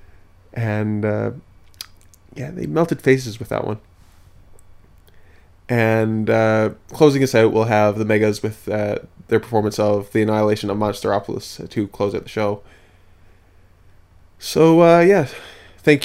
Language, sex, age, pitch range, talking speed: English, male, 20-39, 105-125 Hz, 135 wpm